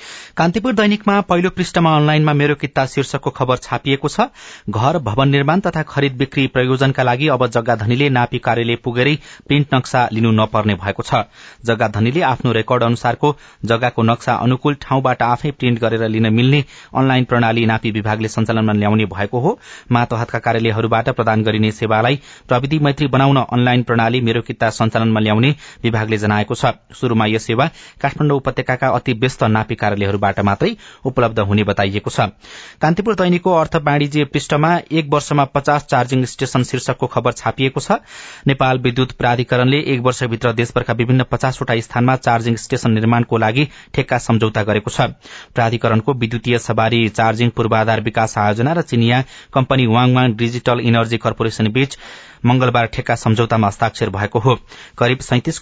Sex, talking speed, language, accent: male, 110 wpm, English, Indian